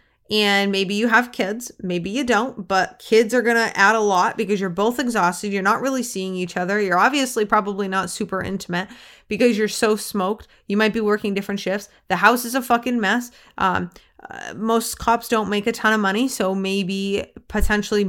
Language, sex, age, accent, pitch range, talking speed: English, female, 20-39, American, 205-265 Hz, 200 wpm